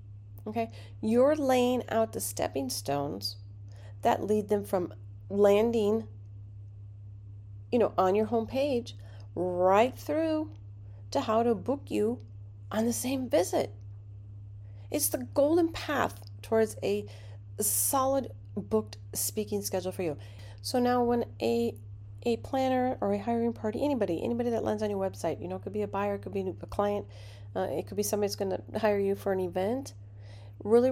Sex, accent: female, American